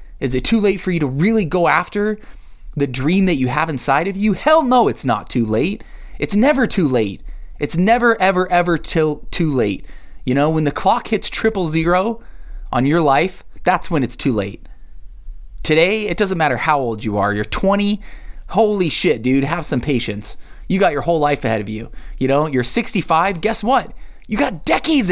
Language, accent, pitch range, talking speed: English, American, 120-185 Hz, 200 wpm